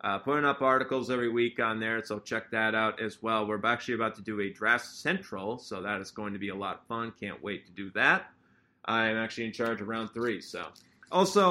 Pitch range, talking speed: 120-165 Hz, 245 wpm